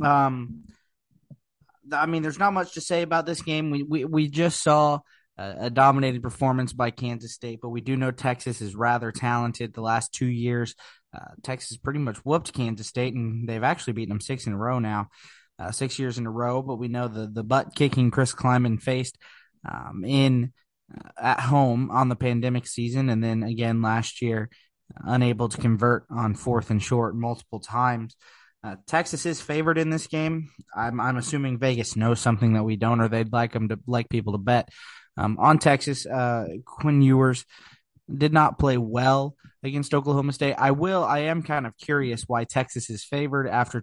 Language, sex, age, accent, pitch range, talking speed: English, male, 20-39, American, 115-140 Hz, 190 wpm